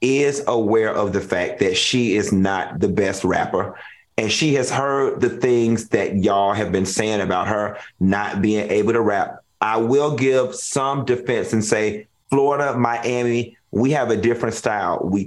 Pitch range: 110-140 Hz